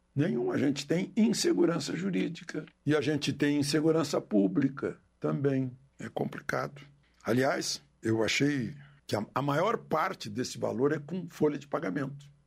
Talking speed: 140 wpm